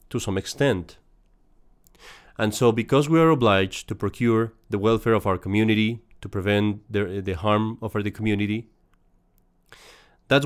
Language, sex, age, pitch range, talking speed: English, male, 30-49, 100-135 Hz, 145 wpm